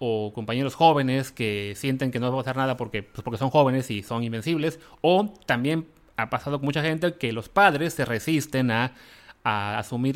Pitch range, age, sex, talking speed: 115-150 Hz, 30-49, male, 200 wpm